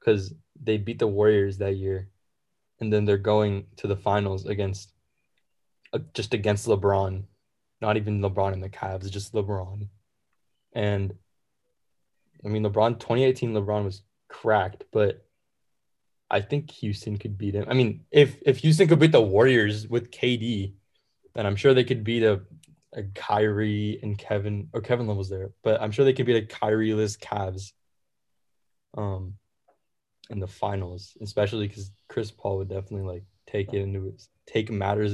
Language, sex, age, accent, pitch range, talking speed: English, male, 10-29, American, 100-115 Hz, 160 wpm